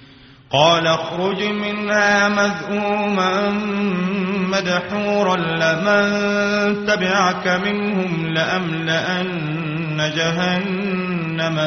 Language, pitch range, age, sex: Arabic, 155-195 Hz, 30-49, male